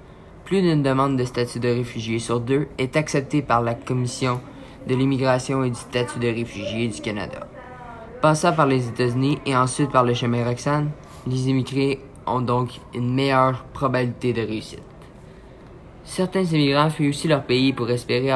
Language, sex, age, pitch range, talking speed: French, male, 20-39, 125-145 Hz, 165 wpm